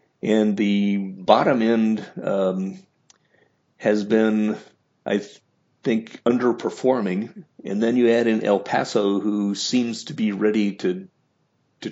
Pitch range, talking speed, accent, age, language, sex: 95-110 Hz, 125 wpm, American, 40-59, English, male